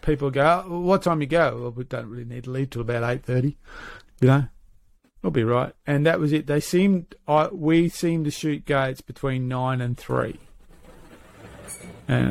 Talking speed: 190 wpm